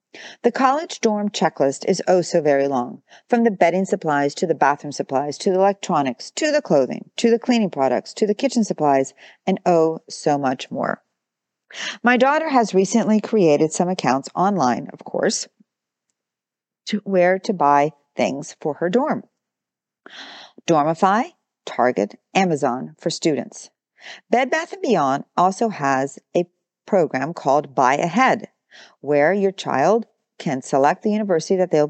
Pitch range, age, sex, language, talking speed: 145-220 Hz, 50-69, female, English, 150 wpm